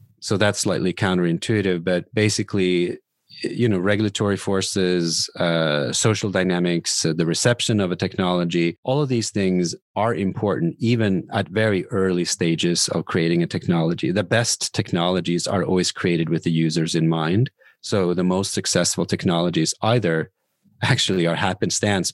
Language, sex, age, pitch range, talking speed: English, male, 30-49, 85-105 Hz, 145 wpm